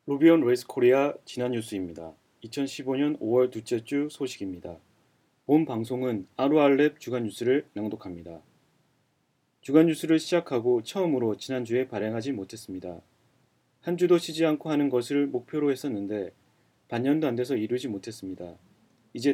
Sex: male